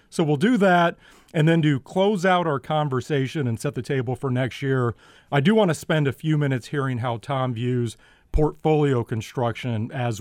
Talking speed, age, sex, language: 195 wpm, 40-59, male, English